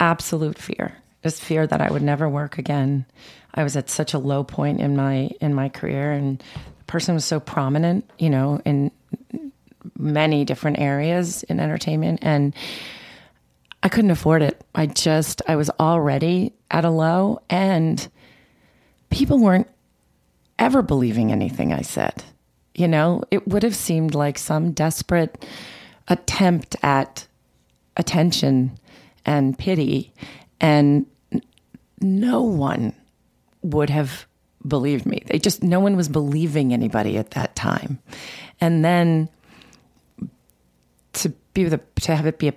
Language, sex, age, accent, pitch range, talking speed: English, female, 30-49, American, 135-170 Hz, 135 wpm